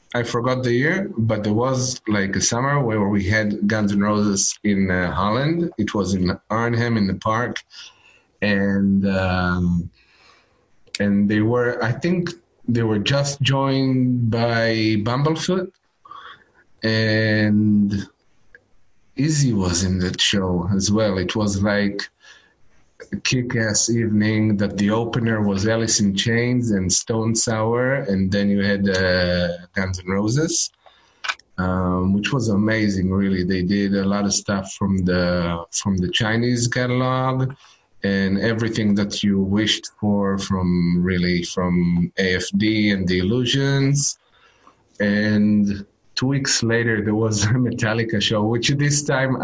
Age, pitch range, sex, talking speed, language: 30-49, 100-120 Hz, male, 135 wpm, English